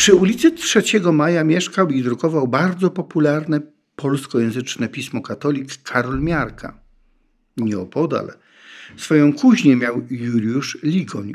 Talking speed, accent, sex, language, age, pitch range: 105 wpm, native, male, Polish, 50-69, 115-160 Hz